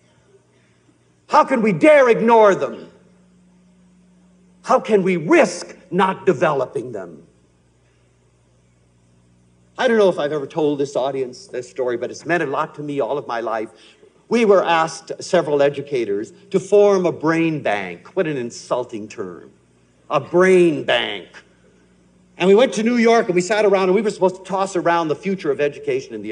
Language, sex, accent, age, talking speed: English, male, American, 60-79, 170 wpm